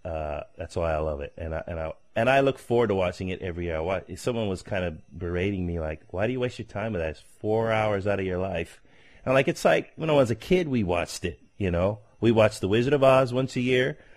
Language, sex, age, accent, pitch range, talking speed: English, male, 30-49, American, 85-115 Hz, 280 wpm